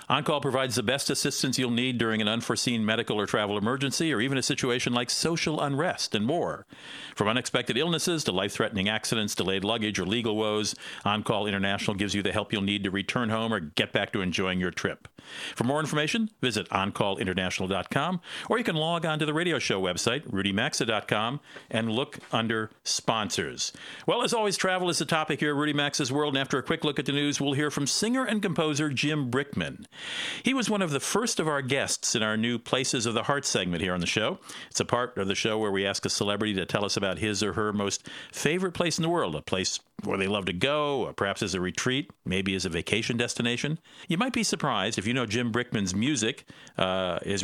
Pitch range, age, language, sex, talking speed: 105-150 Hz, 50-69, English, male, 220 wpm